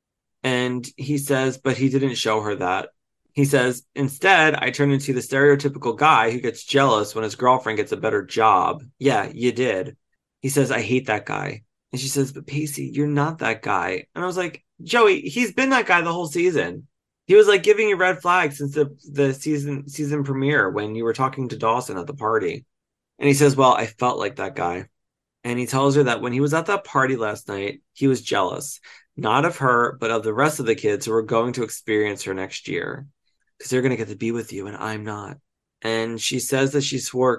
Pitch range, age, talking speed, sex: 110-145 Hz, 30-49, 225 wpm, male